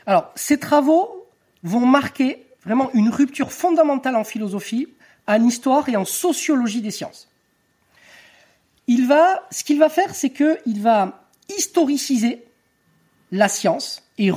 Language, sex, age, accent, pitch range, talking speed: French, male, 40-59, French, 200-295 Hz, 135 wpm